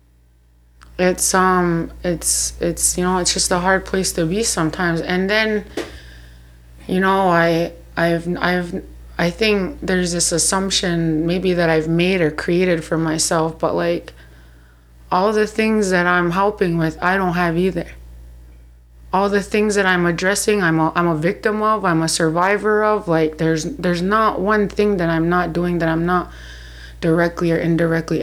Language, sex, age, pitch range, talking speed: English, female, 20-39, 160-180 Hz, 170 wpm